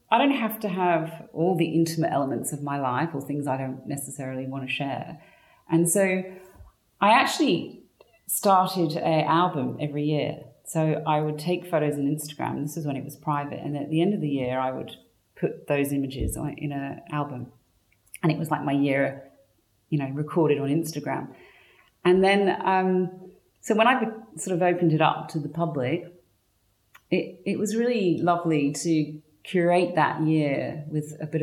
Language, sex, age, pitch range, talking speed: English, female, 40-59, 140-165 Hz, 180 wpm